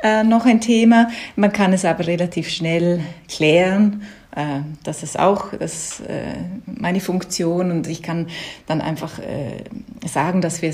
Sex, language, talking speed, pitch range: female, German, 150 wpm, 160-200 Hz